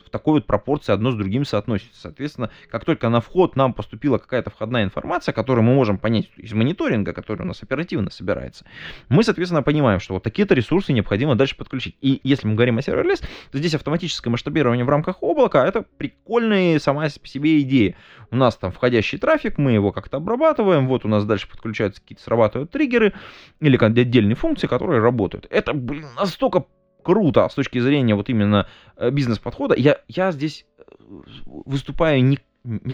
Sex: male